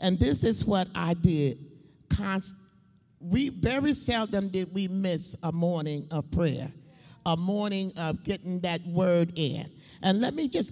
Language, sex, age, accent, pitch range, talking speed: English, male, 50-69, American, 165-235 Hz, 150 wpm